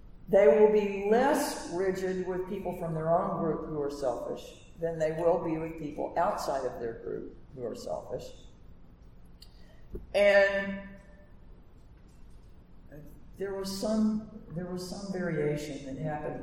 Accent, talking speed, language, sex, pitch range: American, 135 wpm, English, female, 135-215 Hz